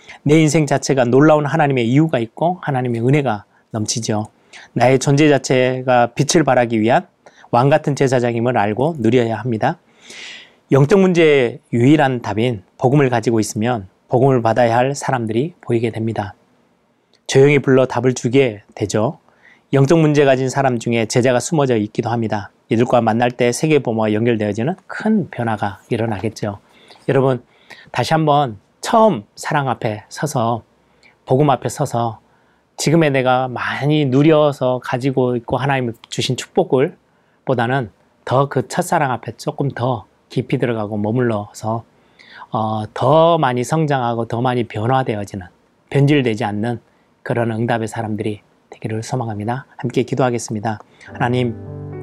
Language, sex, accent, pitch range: Korean, male, native, 115-140 Hz